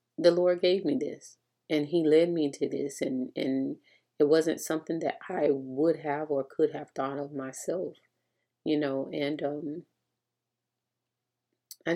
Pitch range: 135-160 Hz